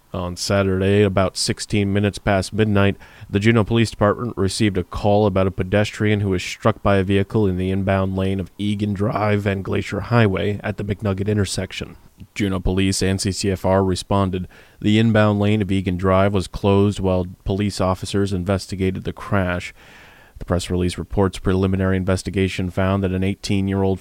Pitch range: 95-105 Hz